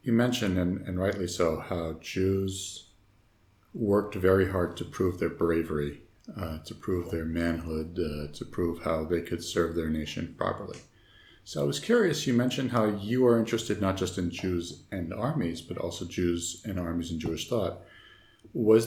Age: 50-69